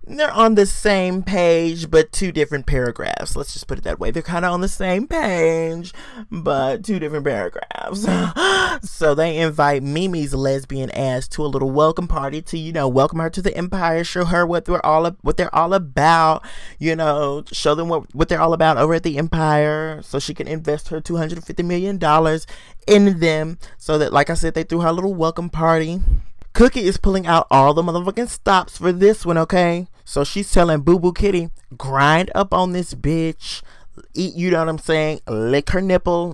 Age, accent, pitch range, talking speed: 20-39, American, 155-200 Hz, 195 wpm